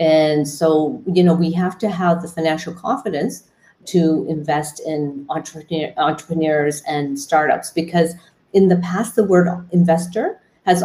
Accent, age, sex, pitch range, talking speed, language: American, 40-59, female, 155-175 Hz, 145 wpm, English